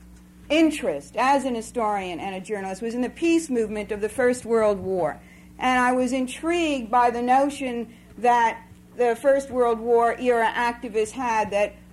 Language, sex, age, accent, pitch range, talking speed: English, female, 50-69, American, 220-280 Hz, 165 wpm